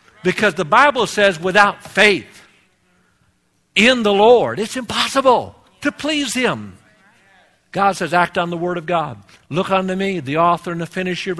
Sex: male